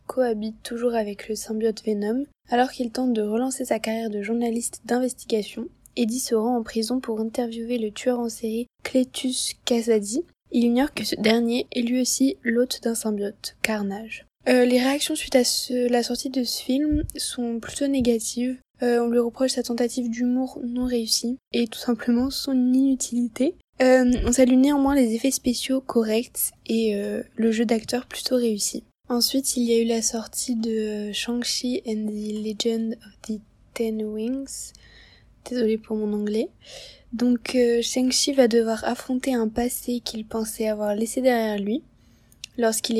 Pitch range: 220-255 Hz